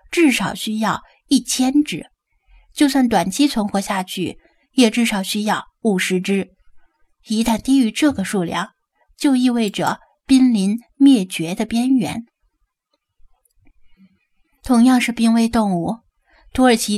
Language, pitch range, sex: Chinese, 190-250 Hz, female